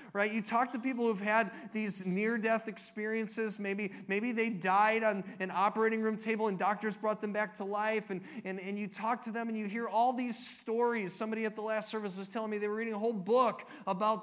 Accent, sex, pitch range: American, male, 200-245 Hz